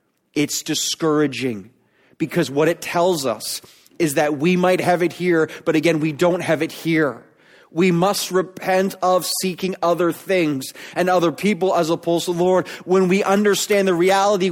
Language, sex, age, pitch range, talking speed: English, male, 30-49, 180-255 Hz, 170 wpm